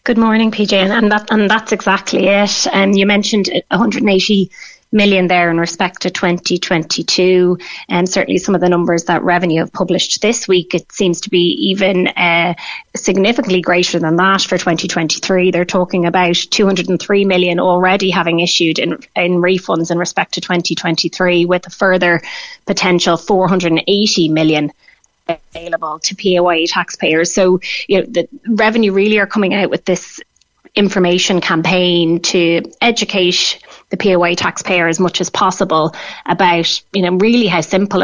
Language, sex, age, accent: English, female, 20-39, Irish